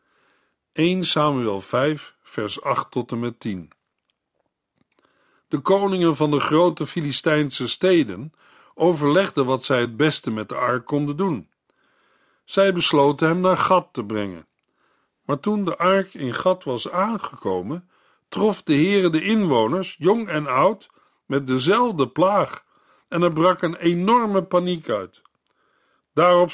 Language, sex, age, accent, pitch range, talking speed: Dutch, male, 50-69, Dutch, 130-190 Hz, 135 wpm